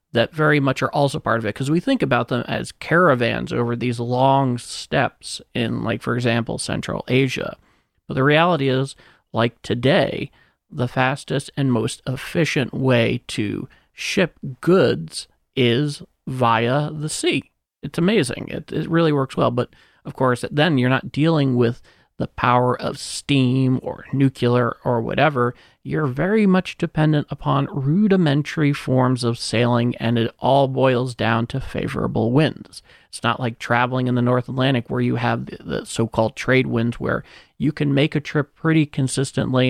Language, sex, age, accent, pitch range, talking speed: English, male, 40-59, American, 120-150 Hz, 165 wpm